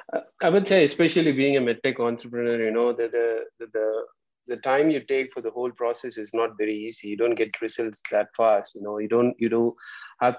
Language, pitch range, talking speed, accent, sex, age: English, 110-120 Hz, 220 wpm, Indian, male, 20-39